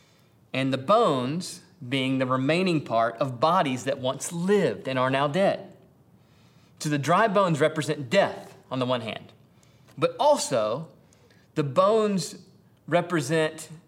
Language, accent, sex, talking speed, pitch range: English, American, male, 135 wpm, 130-170 Hz